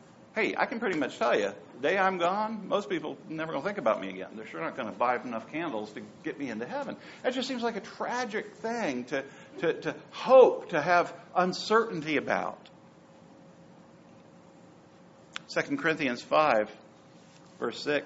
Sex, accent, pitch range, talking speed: male, American, 165-220 Hz, 175 wpm